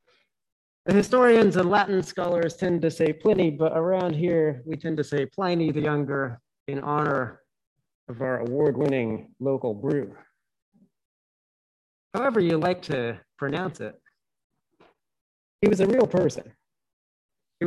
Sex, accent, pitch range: male, American, 130-170 Hz